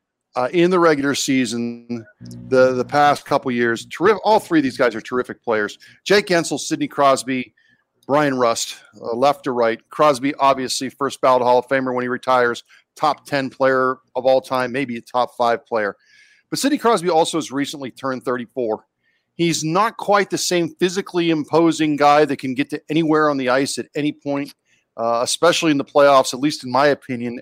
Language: English